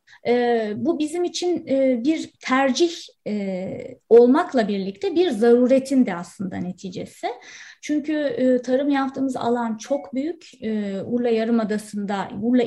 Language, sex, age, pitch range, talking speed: Turkish, female, 30-49, 205-265 Hz, 100 wpm